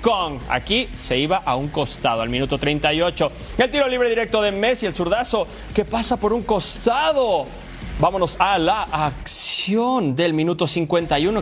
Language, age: Spanish, 30-49